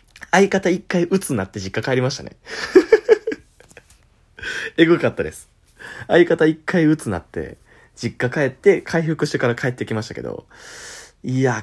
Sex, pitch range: male, 100-145 Hz